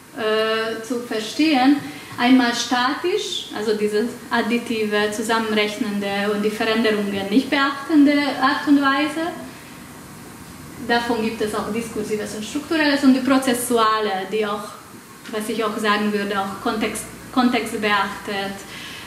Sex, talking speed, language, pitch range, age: female, 115 wpm, German, 215-260 Hz, 20-39